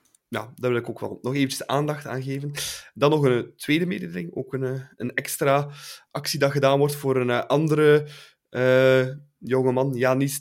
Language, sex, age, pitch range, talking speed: Dutch, male, 20-39, 115-140 Hz, 180 wpm